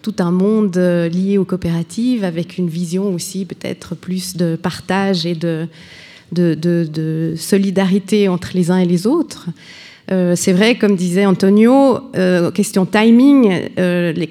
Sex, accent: female, French